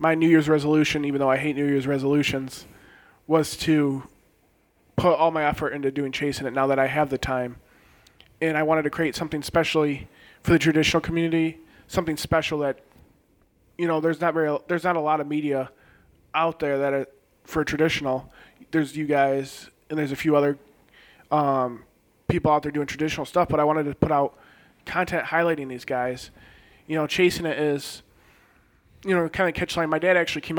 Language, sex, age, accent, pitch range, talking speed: English, male, 20-39, American, 140-165 Hz, 190 wpm